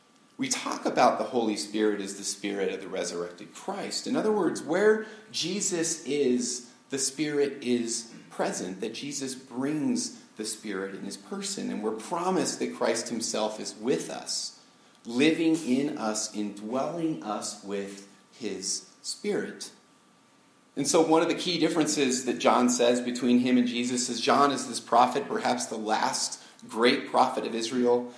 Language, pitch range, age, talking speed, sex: English, 105-145 Hz, 40-59, 160 wpm, male